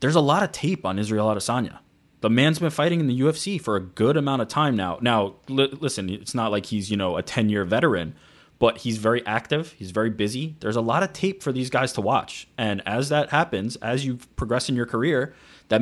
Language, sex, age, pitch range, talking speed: English, male, 20-39, 110-135 Hz, 235 wpm